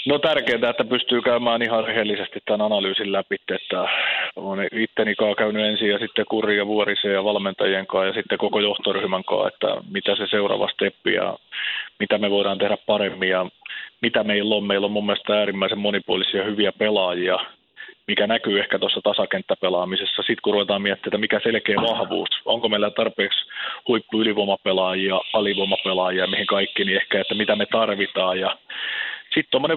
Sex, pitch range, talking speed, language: male, 100-115 Hz, 155 wpm, Finnish